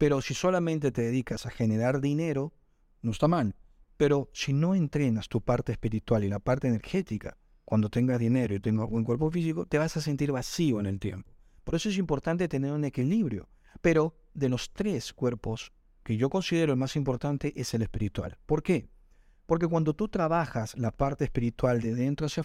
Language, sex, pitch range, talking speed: Spanish, male, 120-165 Hz, 190 wpm